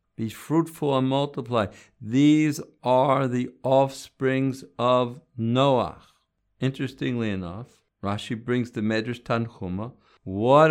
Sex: male